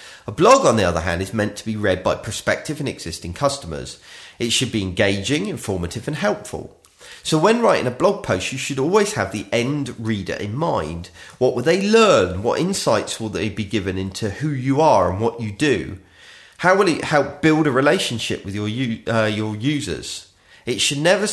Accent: British